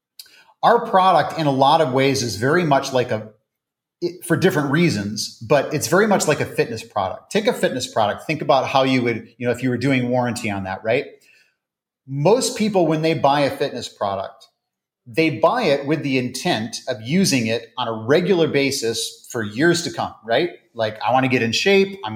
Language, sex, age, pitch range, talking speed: English, male, 30-49, 115-165 Hz, 205 wpm